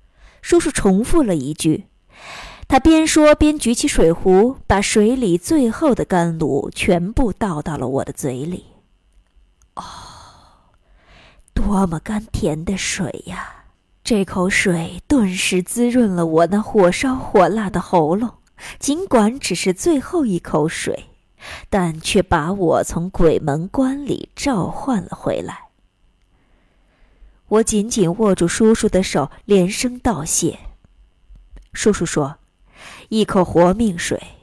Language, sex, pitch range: Chinese, female, 165-225 Hz